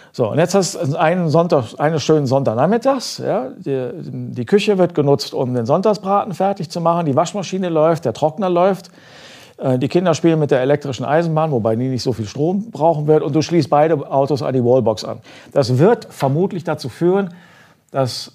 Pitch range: 115-155 Hz